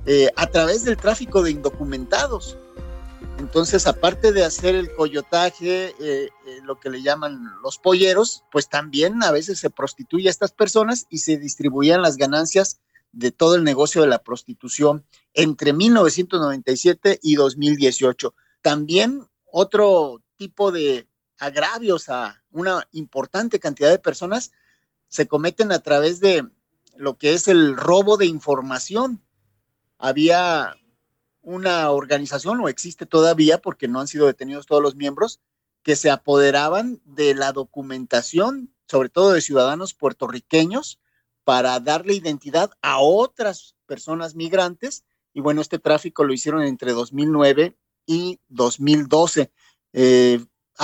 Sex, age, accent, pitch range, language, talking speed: male, 50-69, Mexican, 140-185 Hz, Spanish, 130 wpm